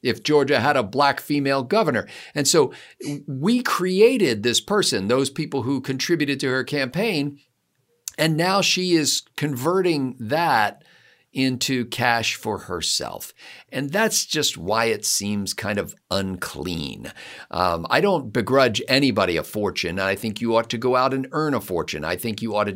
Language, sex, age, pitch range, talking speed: English, male, 50-69, 110-145 Hz, 165 wpm